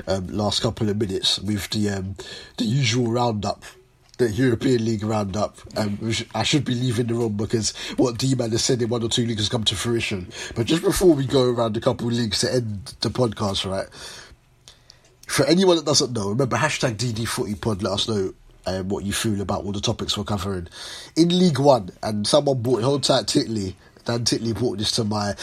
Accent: British